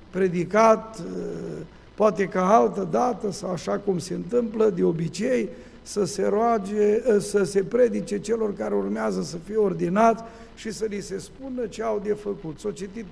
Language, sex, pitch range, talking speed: Romanian, male, 195-230 Hz, 160 wpm